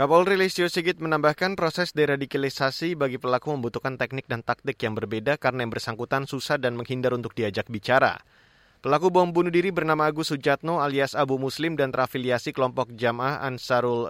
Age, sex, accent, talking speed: 20-39, male, native, 160 wpm